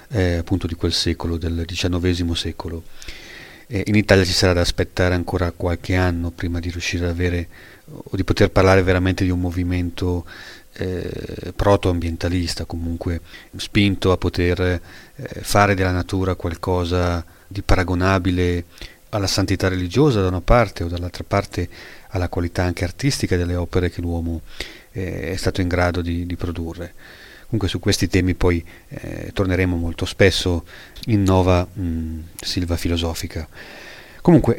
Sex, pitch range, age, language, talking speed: male, 85-100 Hz, 30-49, Italian, 145 wpm